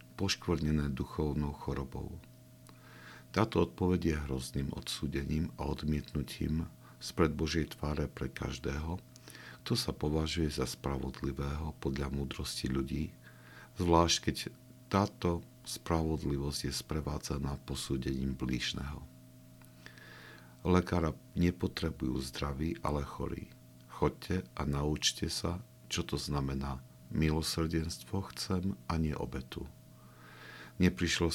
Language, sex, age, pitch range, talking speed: Slovak, male, 50-69, 70-85 Hz, 95 wpm